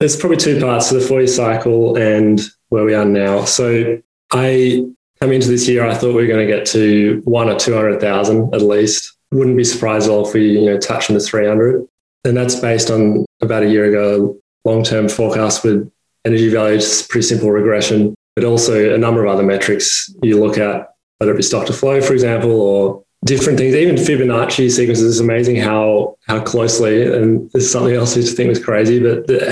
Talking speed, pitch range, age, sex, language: 210 wpm, 105-120 Hz, 20-39, male, English